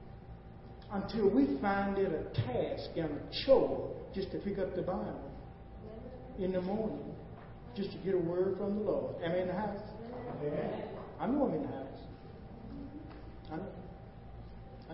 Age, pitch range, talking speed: 50-69, 145-230 Hz, 150 wpm